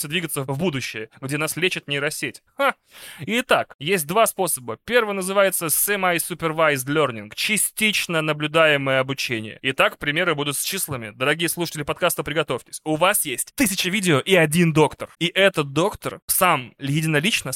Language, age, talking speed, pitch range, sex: Russian, 20-39, 140 wpm, 130-175 Hz, male